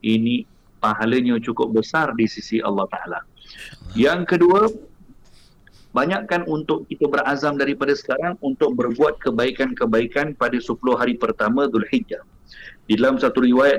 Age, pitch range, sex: 50-69, 120-165 Hz, male